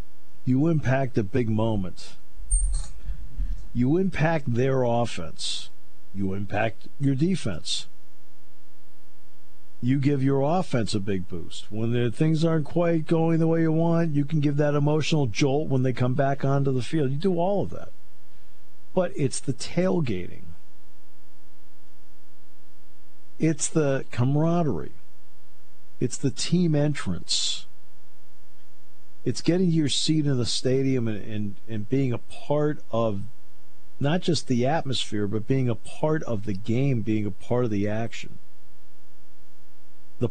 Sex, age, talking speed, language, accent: male, 50-69, 135 wpm, English, American